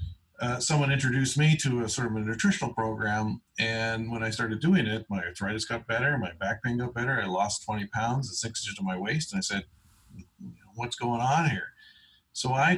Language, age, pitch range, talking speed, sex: English, 40-59, 110-135 Hz, 210 wpm, male